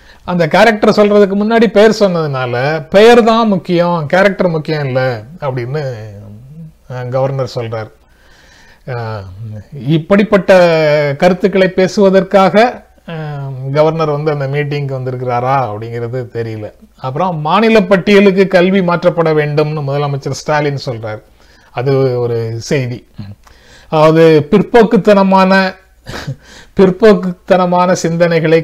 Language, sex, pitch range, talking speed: Tamil, male, 130-175 Hz, 85 wpm